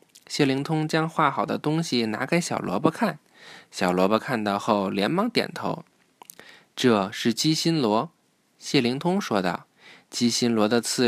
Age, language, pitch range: 20-39, Chinese, 120-170 Hz